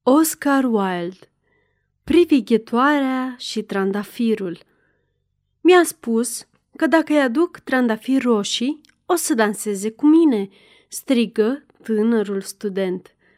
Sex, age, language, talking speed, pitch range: female, 30-49, Romanian, 95 wpm, 215-290 Hz